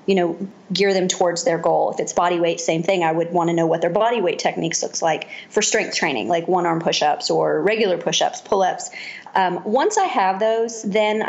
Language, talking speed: English, 240 wpm